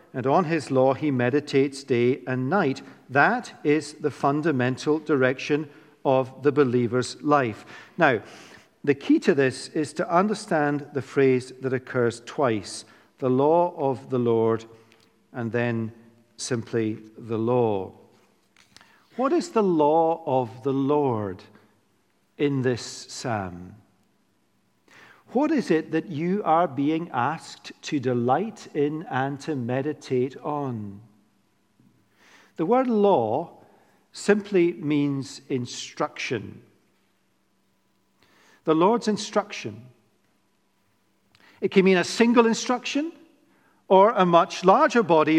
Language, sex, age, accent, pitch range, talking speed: English, male, 50-69, British, 125-195 Hz, 115 wpm